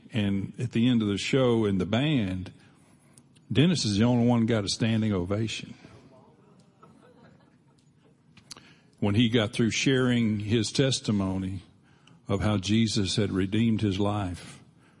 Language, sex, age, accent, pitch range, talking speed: English, male, 60-79, American, 100-125 Hz, 135 wpm